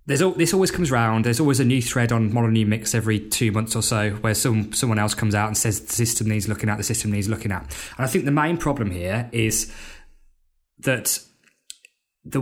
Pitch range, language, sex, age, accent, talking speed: 110-135 Hz, English, male, 20-39, British, 230 wpm